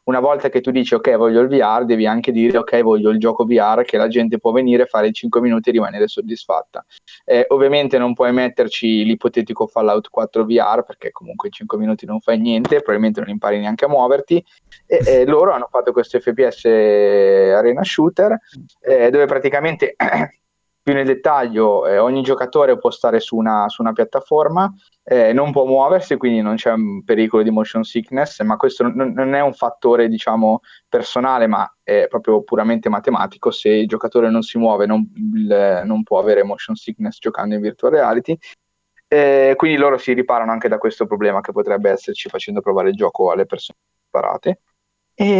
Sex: male